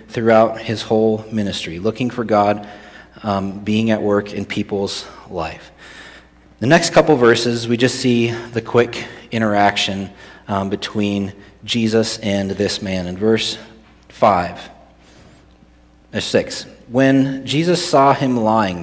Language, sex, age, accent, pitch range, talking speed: English, male, 40-59, American, 100-125 Hz, 125 wpm